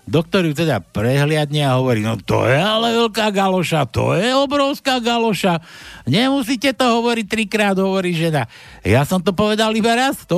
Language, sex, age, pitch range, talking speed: Slovak, male, 60-79, 130-195 Hz, 160 wpm